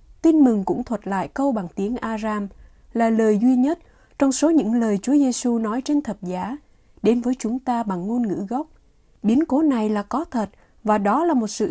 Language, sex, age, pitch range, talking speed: Vietnamese, female, 20-39, 205-275 Hz, 215 wpm